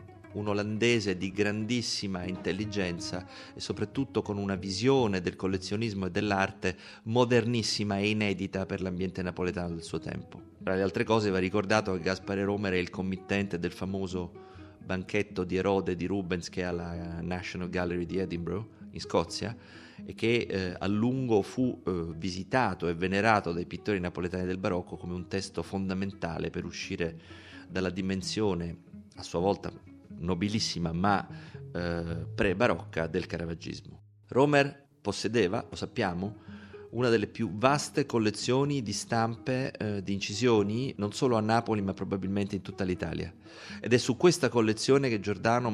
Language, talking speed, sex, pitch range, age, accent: Italian, 150 wpm, male, 90-110 Hz, 30-49, native